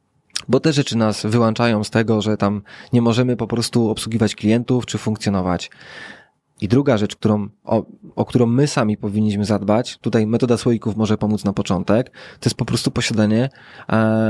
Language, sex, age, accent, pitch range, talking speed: Polish, male, 20-39, native, 105-125 Hz, 170 wpm